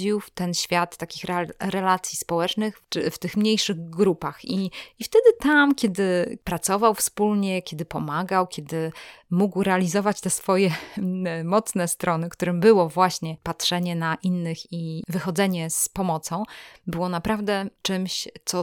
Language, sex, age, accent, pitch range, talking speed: Polish, female, 20-39, native, 175-205 Hz, 130 wpm